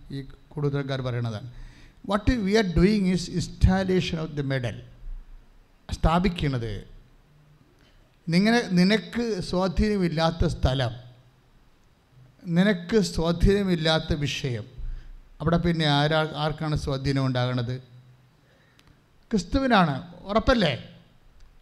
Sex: male